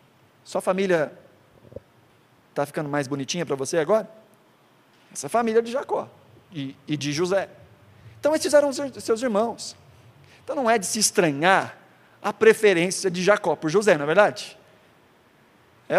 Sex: male